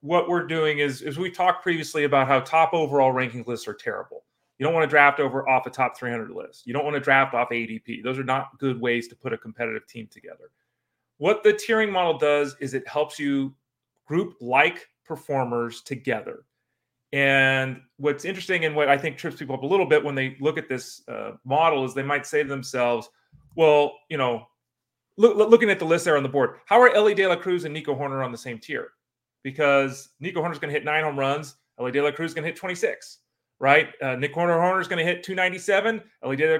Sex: male